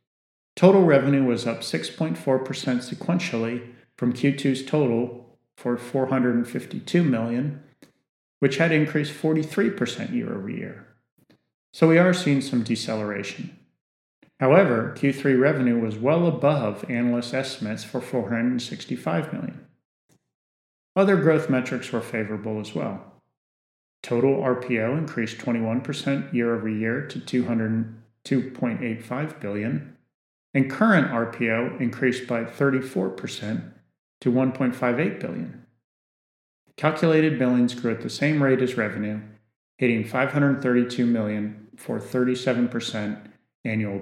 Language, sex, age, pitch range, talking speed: English, male, 40-59, 115-140 Hz, 100 wpm